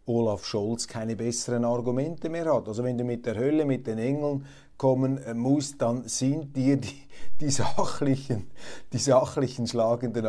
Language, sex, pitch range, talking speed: German, male, 105-130 Hz, 145 wpm